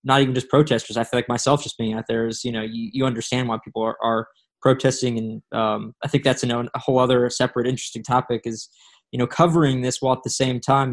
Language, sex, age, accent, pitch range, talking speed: English, male, 20-39, American, 120-135 Hz, 240 wpm